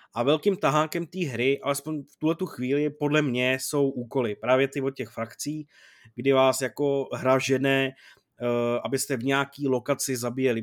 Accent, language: native, Czech